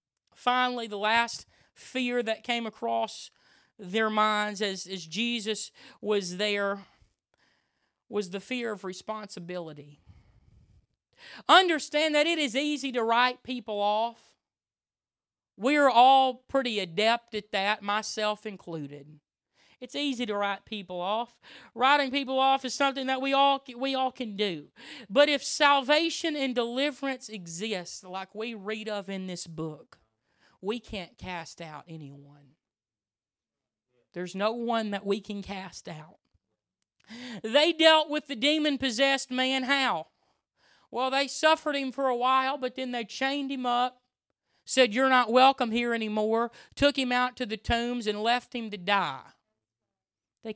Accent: American